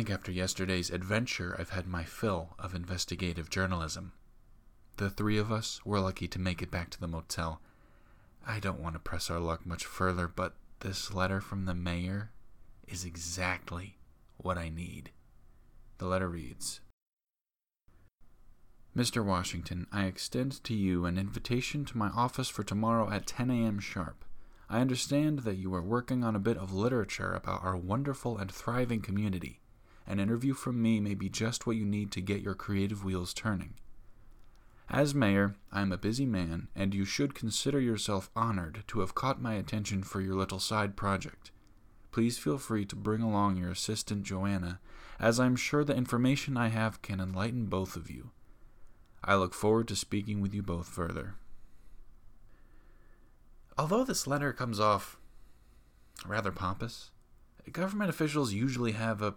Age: 20-39